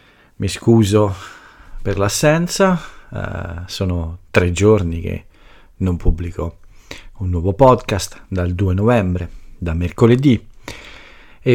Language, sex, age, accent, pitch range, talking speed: Italian, male, 50-69, native, 90-110 Hz, 105 wpm